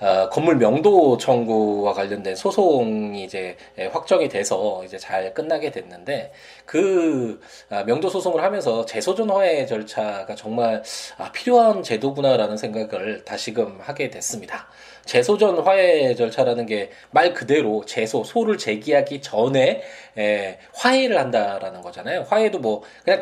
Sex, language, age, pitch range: male, Korean, 20-39, 110-175 Hz